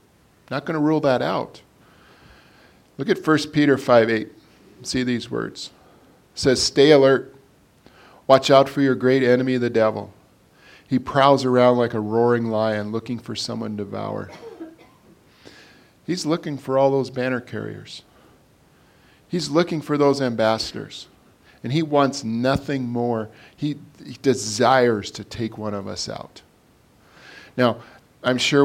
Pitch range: 110-135 Hz